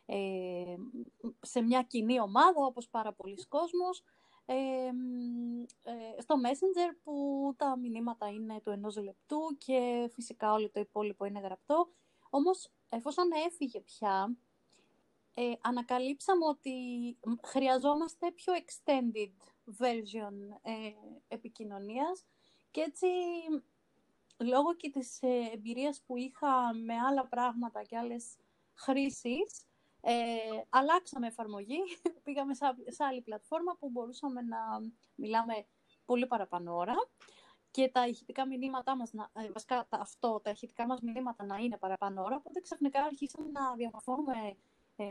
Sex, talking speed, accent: female, 110 wpm, native